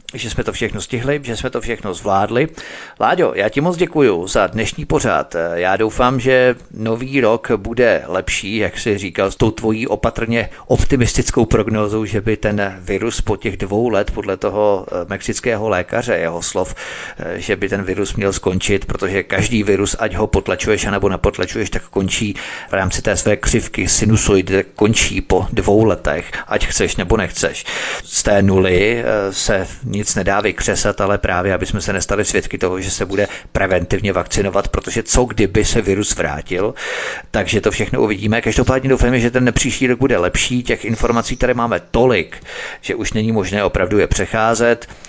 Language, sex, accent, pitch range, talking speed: Czech, male, native, 100-115 Hz, 170 wpm